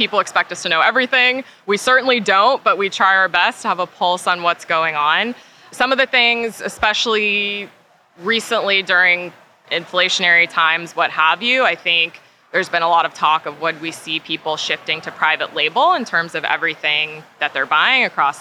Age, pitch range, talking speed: 20-39, 165-210 Hz, 190 wpm